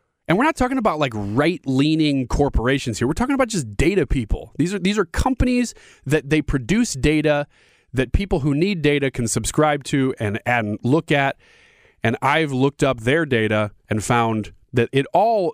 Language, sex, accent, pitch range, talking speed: English, male, American, 120-165 Hz, 180 wpm